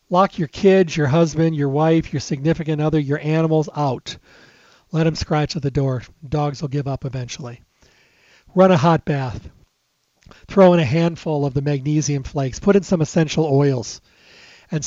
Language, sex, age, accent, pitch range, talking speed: English, male, 40-59, American, 140-170 Hz, 170 wpm